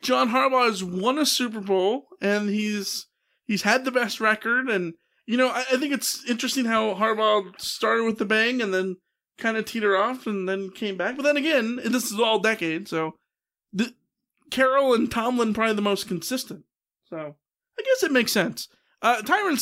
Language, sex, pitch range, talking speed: English, male, 190-250 Hz, 185 wpm